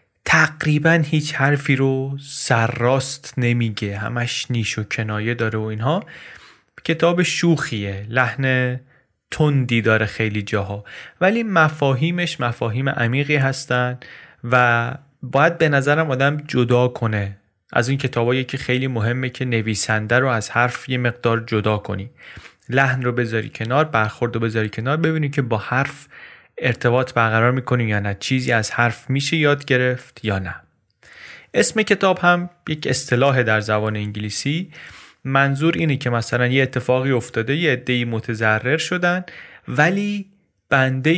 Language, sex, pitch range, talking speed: Persian, male, 115-140 Hz, 135 wpm